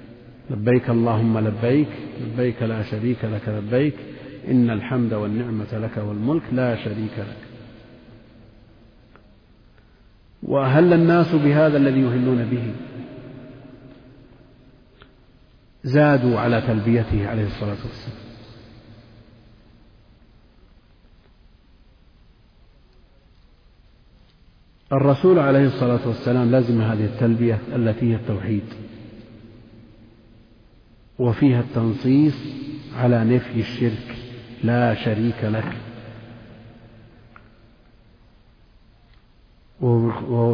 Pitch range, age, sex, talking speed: 110-125 Hz, 50-69, male, 70 wpm